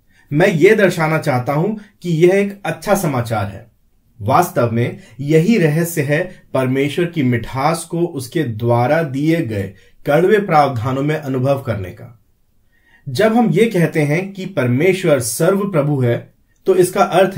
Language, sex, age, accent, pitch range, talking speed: English, male, 30-49, Indian, 125-180 Hz, 150 wpm